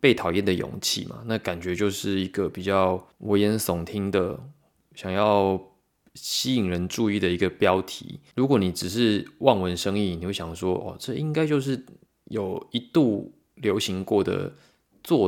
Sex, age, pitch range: male, 20-39, 90-115 Hz